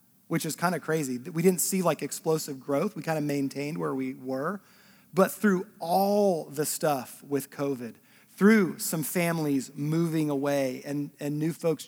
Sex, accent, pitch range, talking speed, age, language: male, American, 145-190 Hz, 170 wpm, 40-59, English